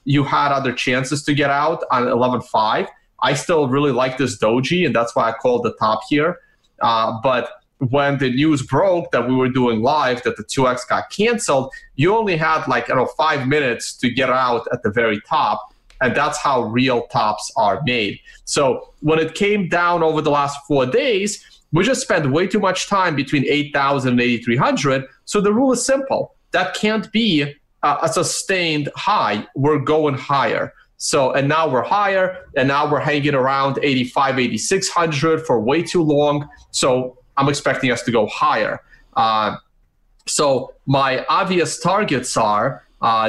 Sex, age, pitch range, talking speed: male, 30-49, 130-170 Hz, 175 wpm